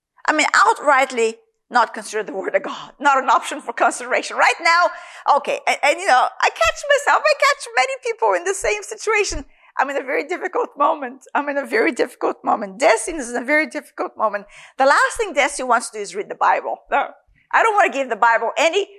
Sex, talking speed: female, 220 wpm